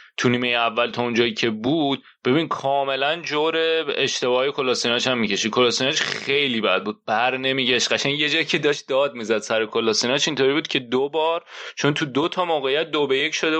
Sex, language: male, Persian